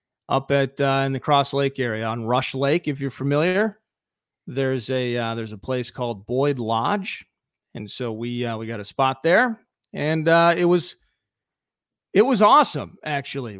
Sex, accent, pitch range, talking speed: male, American, 125-155 Hz, 175 wpm